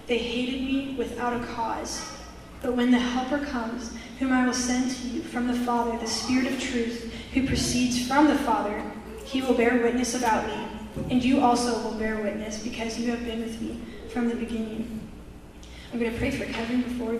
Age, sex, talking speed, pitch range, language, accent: 10-29, female, 200 wpm, 225-245 Hz, English, American